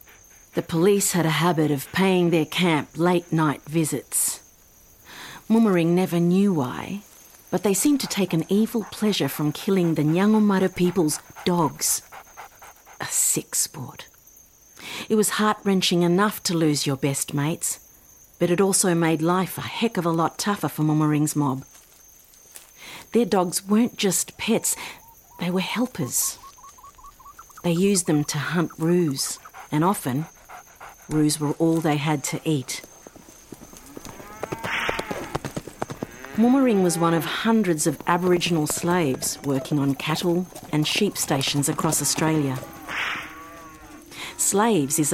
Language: English